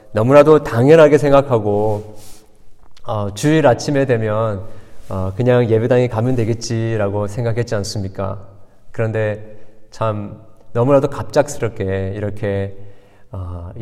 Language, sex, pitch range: Korean, male, 100-130 Hz